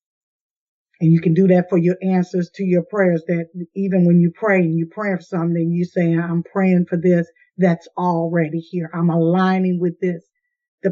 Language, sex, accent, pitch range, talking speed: English, female, American, 175-195 Hz, 200 wpm